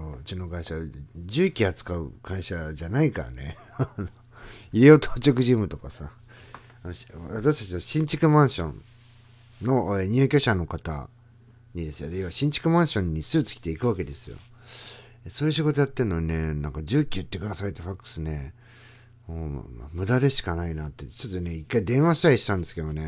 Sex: male